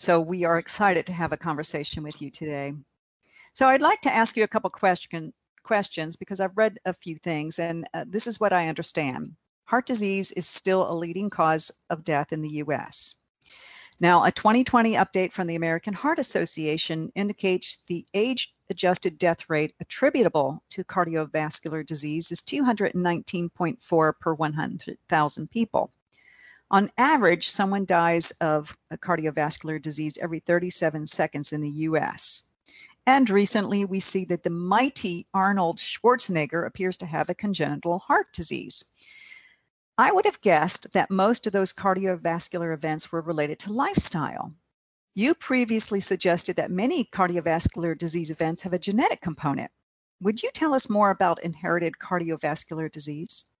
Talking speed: 150 wpm